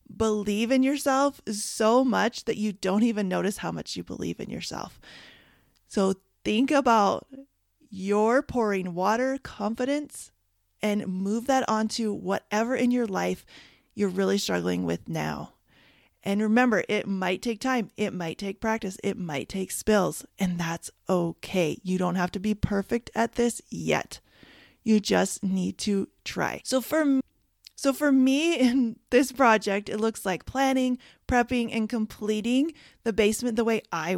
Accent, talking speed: American, 155 wpm